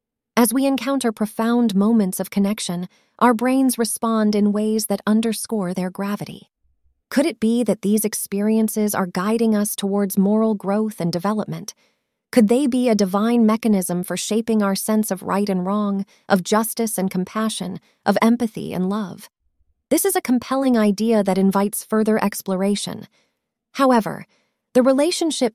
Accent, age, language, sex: American, 30-49, English, female